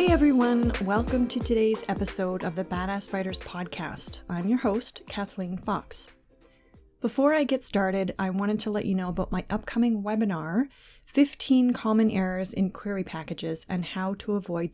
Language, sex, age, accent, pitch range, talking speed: English, female, 30-49, American, 185-230 Hz, 165 wpm